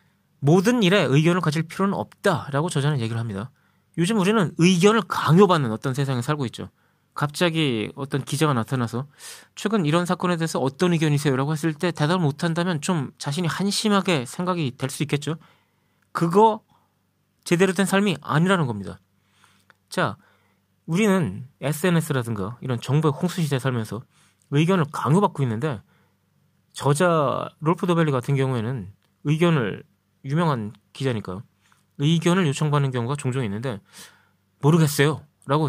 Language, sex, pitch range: Korean, male, 120-175 Hz